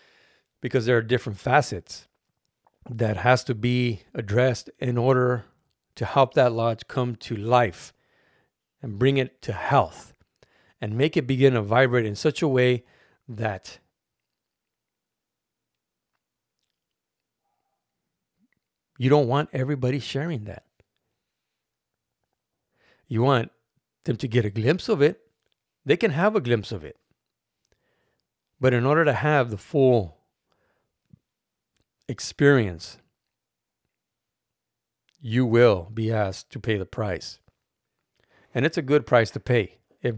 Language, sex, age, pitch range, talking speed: English, male, 40-59, 110-135 Hz, 120 wpm